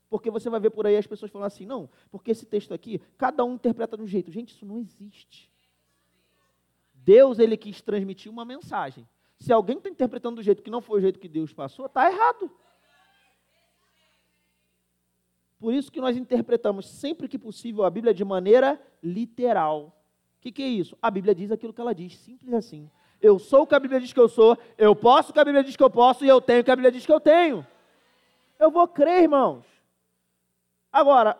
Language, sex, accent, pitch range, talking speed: Portuguese, male, Brazilian, 190-260 Hz, 210 wpm